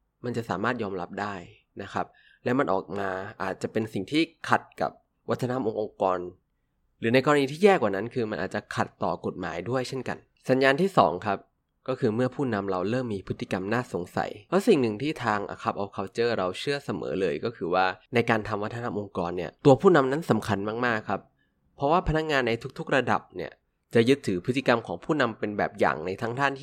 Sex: male